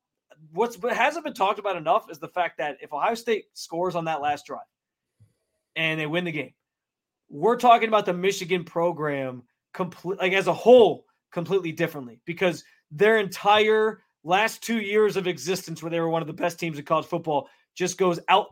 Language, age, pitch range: English, 20-39, 160-195 Hz